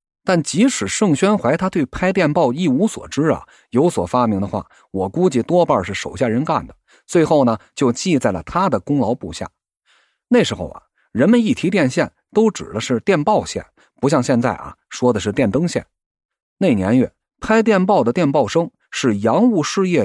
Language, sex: Chinese, male